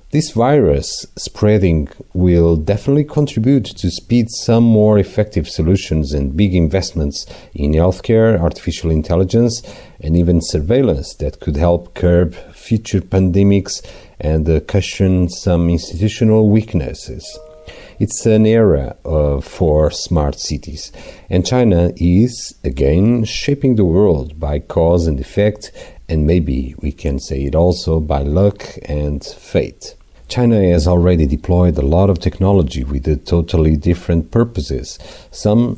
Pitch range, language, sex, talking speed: 80-105 Hz, English, male, 125 wpm